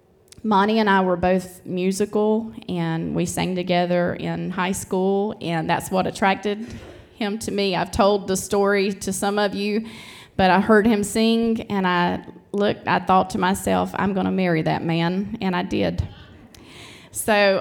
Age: 20-39